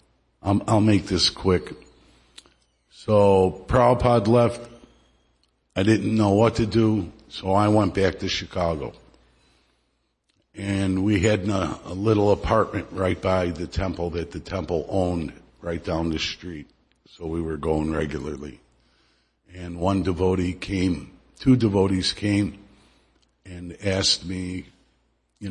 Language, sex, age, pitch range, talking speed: English, male, 60-79, 90-110 Hz, 125 wpm